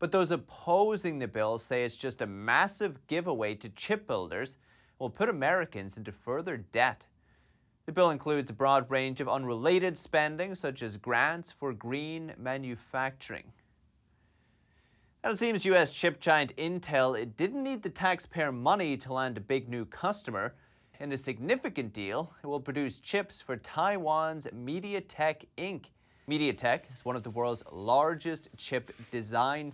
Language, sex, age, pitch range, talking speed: English, male, 30-49, 115-160 Hz, 150 wpm